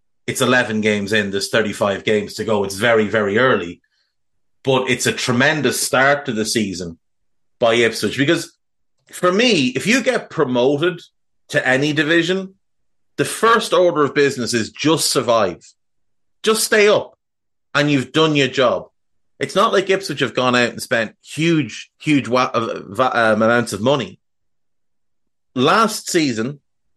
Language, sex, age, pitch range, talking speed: English, male, 30-49, 110-145 Hz, 145 wpm